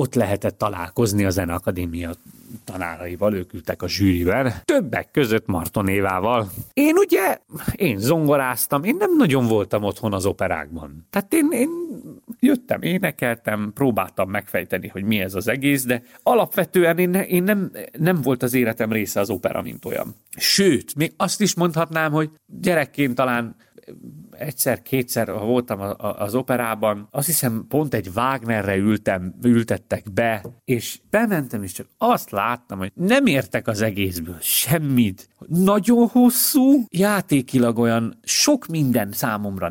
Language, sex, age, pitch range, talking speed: Hungarian, male, 30-49, 100-150 Hz, 140 wpm